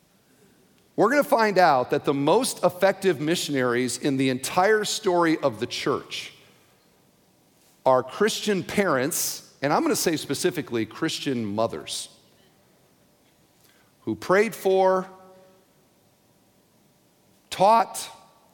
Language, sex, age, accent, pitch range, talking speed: English, male, 50-69, American, 120-175 Hz, 105 wpm